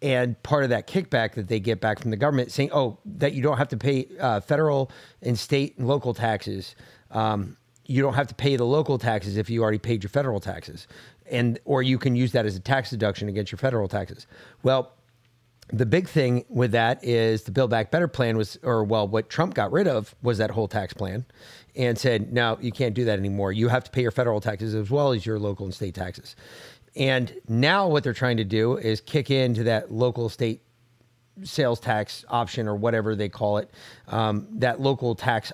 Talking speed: 220 wpm